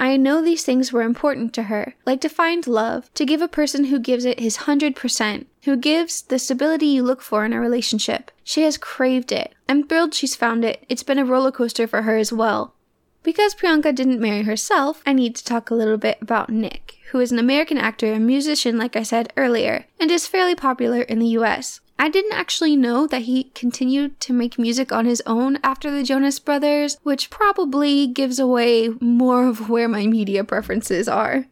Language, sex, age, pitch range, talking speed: English, female, 10-29, 230-285 Hz, 210 wpm